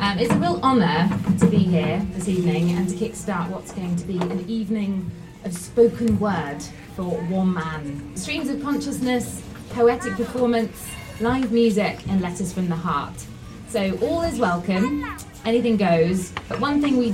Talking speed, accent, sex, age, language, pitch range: 165 wpm, British, female, 20-39, English, 175-230 Hz